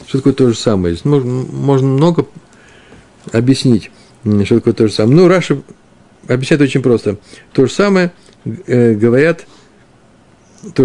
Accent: native